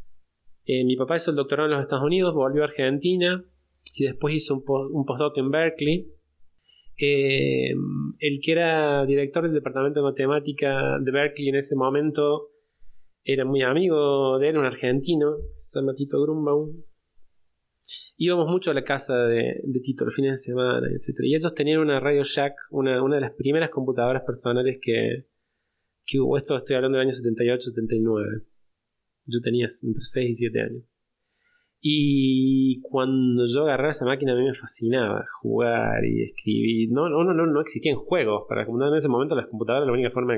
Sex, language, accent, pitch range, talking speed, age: male, Spanish, Argentinian, 125-150 Hz, 175 wpm, 20-39